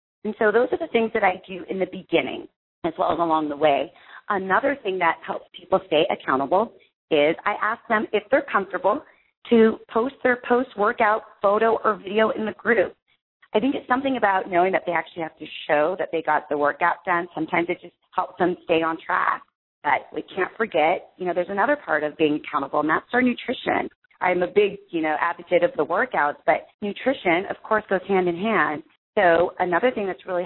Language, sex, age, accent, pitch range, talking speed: English, female, 30-49, American, 165-215 Hz, 210 wpm